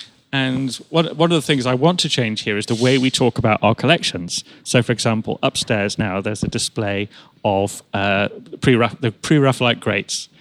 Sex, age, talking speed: male, 30-49, 180 wpm